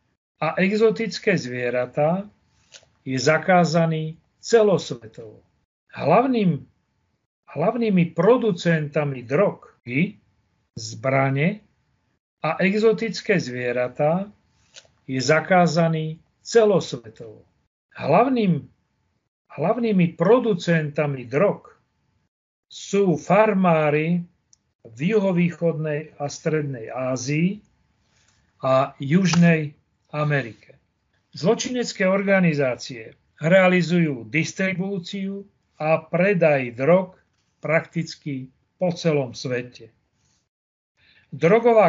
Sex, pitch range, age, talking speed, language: male, 140-185 Hz, 40-59, 60 wpm, Slovak